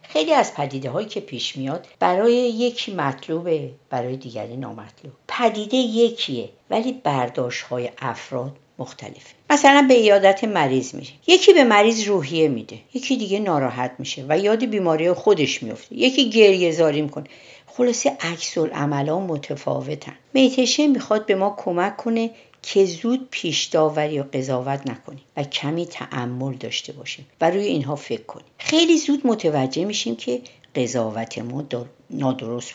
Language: Persian